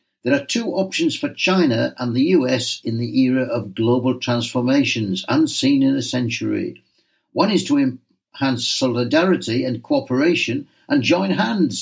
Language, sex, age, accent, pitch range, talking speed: English, male, 60-79, British, 120-190 Hz, 145 wpm